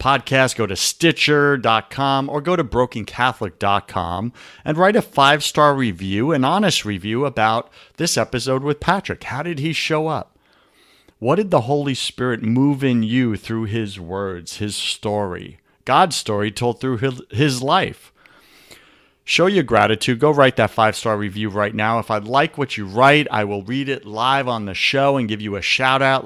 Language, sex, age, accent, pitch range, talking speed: English, male, 50-69, American, 110-150 Hz, 175 wpm